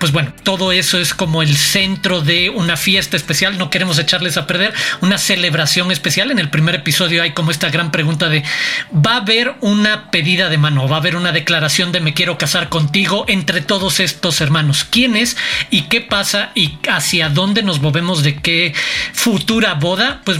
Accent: Mexican